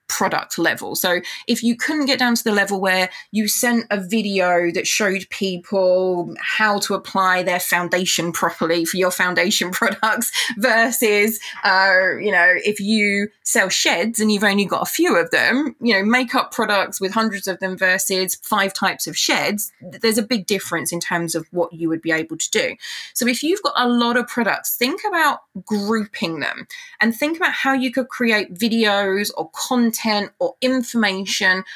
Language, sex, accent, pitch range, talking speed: English, female, British, 185-240 Hz, 180 wpm